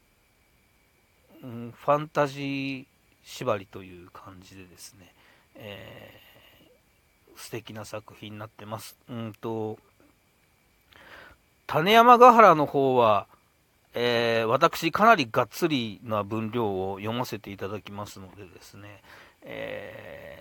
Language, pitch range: Japanese, 110-135 Hz